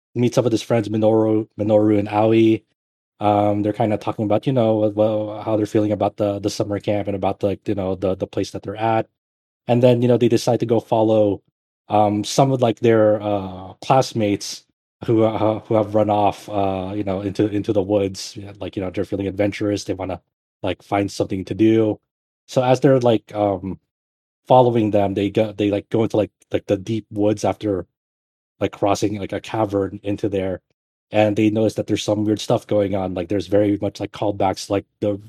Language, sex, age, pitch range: English, male, 20-39, 100-110 Hz